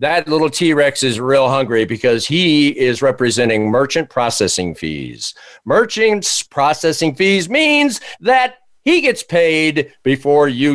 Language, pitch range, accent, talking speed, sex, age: English, 145-200 Hz, American, 130 wpm, male, 50-69